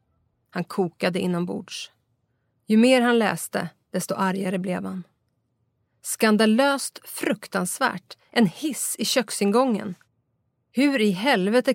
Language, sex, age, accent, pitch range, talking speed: Swedish, female, 30-49, native, 180-215 Hz, 105 wpm